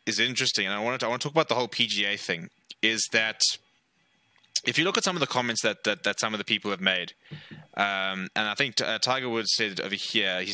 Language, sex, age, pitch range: English, male, 20-39, 100-125 Hz